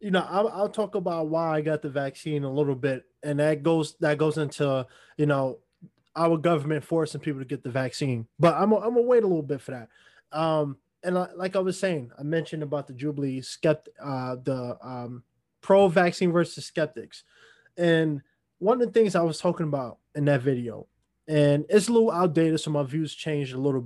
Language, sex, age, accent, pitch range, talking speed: English, male, 20-39, American, 145-180 Hz, 210 wpm